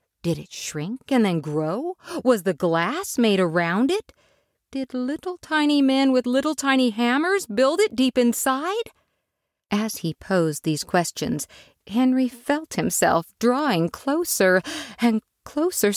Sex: female